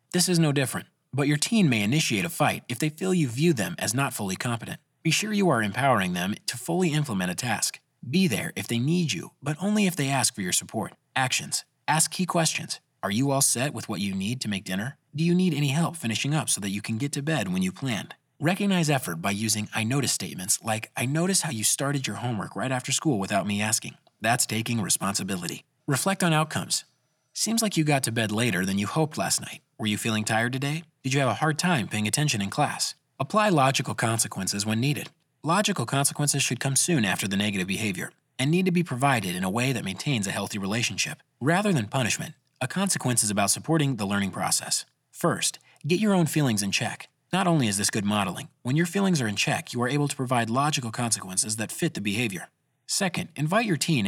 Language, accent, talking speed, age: English, American, 225 wpm, 30-49